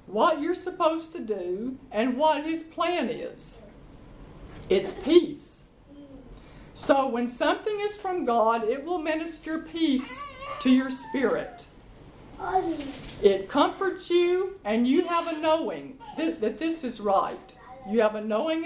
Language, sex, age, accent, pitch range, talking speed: English, female, 50-69, American, 235-325 Hz, 135 wpm